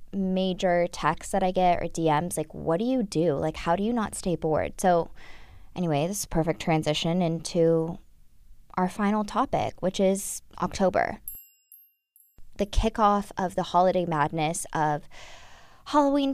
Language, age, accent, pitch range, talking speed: English, 20-39, American, 175-225 Hz, 150 wpm